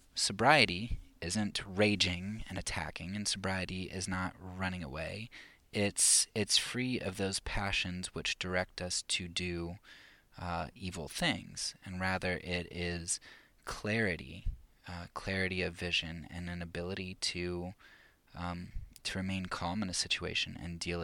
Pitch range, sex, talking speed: 85-95 Hz, male, 135 wpm